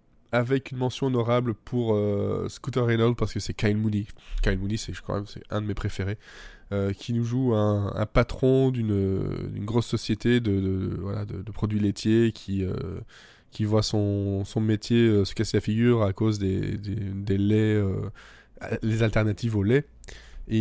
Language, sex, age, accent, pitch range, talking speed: French, male, 20-39, French, 100-120 Hz, 190 wpm